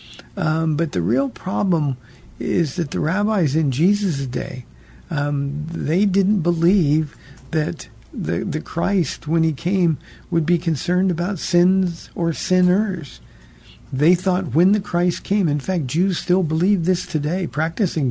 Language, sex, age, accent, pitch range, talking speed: English, male, 50-69, American, 140-175 Hz, 145 wpm